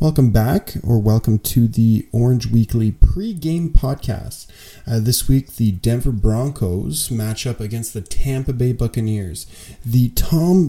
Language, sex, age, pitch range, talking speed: English, male, 20-39, 105-120 Hz, 140 wpm